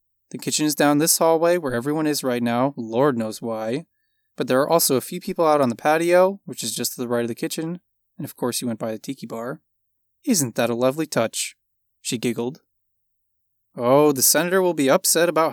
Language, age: English, 20-39